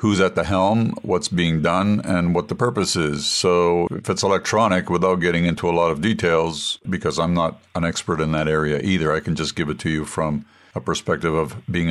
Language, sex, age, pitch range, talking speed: English, male, 50-69, 80-95 Hz, 220 wpm